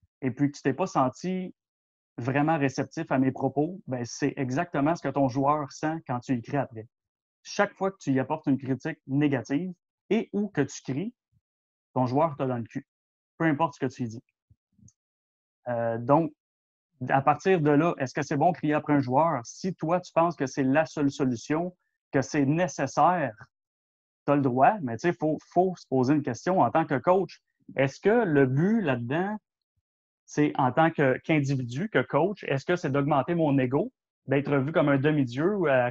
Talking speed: 200 wpm